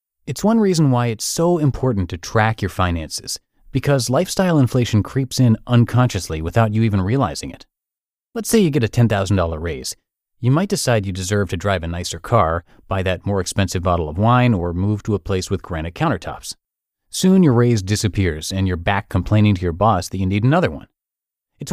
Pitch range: 95-130 Hz